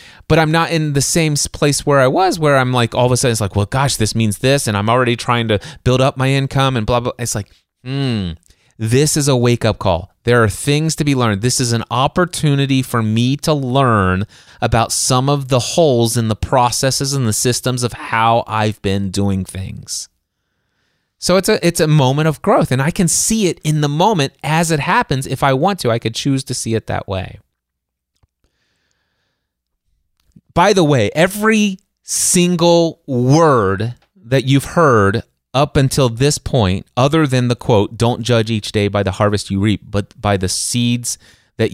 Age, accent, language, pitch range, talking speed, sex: 30-49, American, English, 105-140 Hz, 195 wpm, male